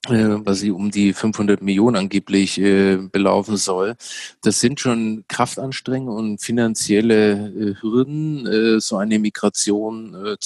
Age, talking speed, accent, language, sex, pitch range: 40-59, 130 wpm, German, German, male, 105-120 Hz